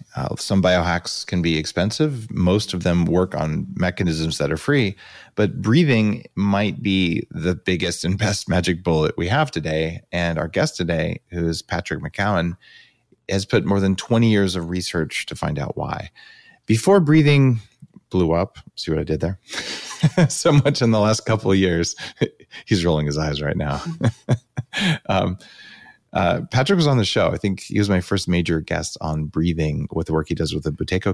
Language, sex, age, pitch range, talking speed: English, male, 30-49, 85-110 Hz, 185 wpm